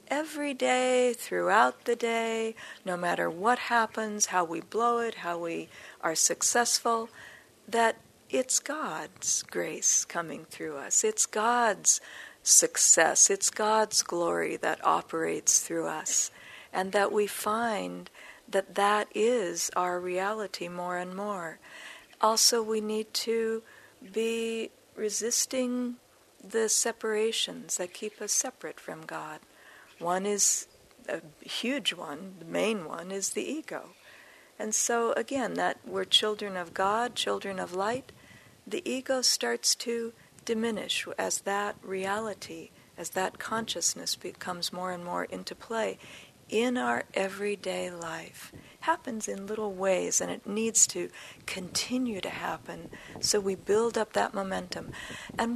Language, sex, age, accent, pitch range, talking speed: English, female, 50-69, American, 195-235 Hz, 130 wpm